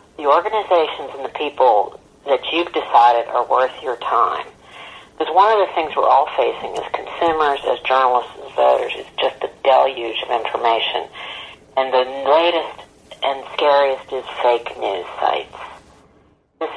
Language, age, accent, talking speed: English, 50-69, American, 150 wpm